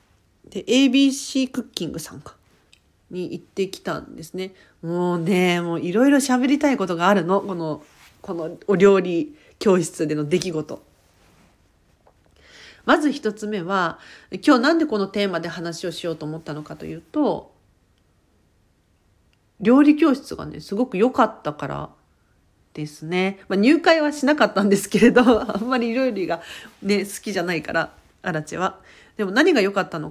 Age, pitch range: 40-59, 150-215 Hz